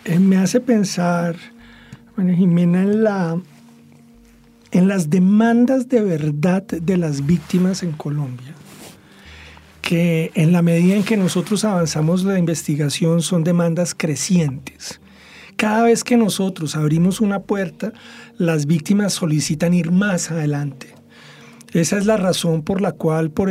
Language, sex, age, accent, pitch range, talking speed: English, male, 50-69, Colombian, 160-200 Hz, 130 wpm